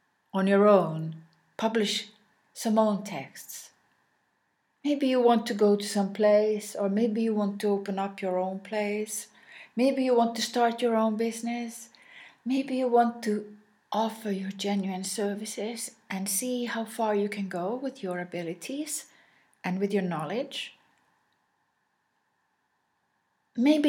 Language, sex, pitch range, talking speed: English, female, 195-235 Hz, 140 wpm